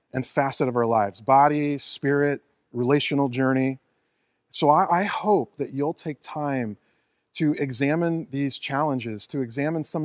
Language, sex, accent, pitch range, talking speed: English, male, American, 130-155 Hz, 145 wpm